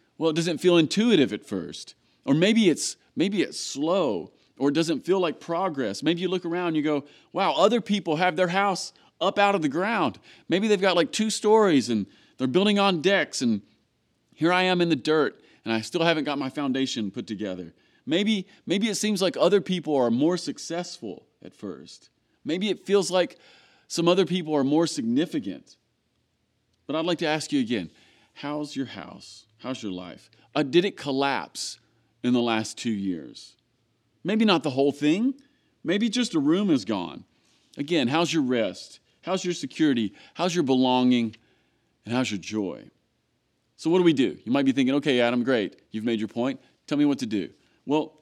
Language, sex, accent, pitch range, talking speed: English, male, American, 125-185 Hz, 195 wpm